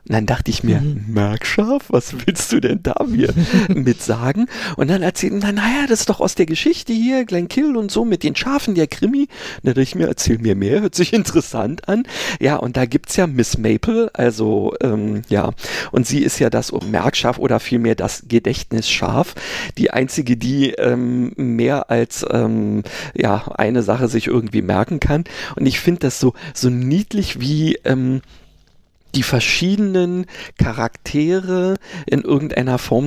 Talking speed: 175 wpm